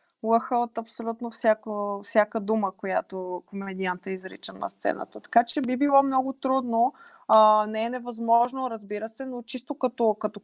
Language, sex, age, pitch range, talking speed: Bulgarian, female, 20-39, 185-235 Hz, 155 wpm